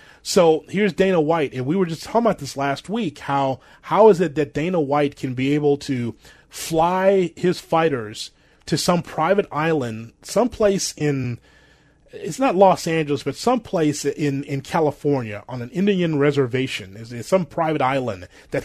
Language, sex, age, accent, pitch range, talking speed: English, male, 30-49, American, 135-165 Hz, 165 wpm